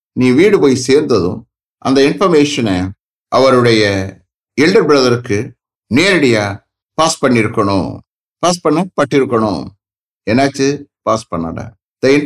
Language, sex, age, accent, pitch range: English, male, 60-79, Indian, 105-150 Hz